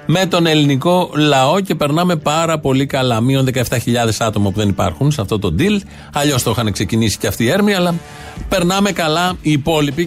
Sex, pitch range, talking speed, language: male, 115-150 Hz, 190 wpm, Greek